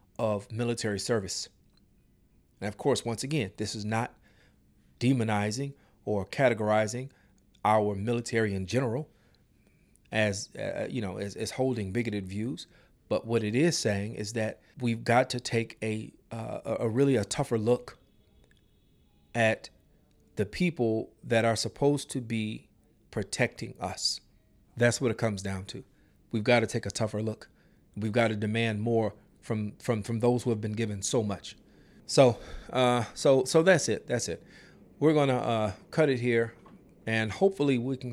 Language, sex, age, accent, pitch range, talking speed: English, male, 40-59, American, 105-120 Hz, 160 wpm